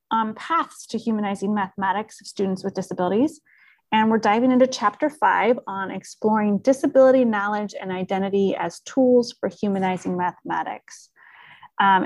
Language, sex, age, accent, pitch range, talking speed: English, female, 30-49, American, 195-240 Hz, 135 wpm